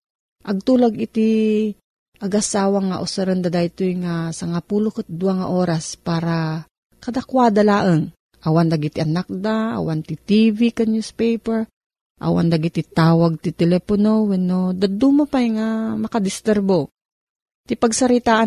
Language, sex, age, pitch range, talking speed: Filipino, female, 40-59, 170-225 Hz, 105 wpm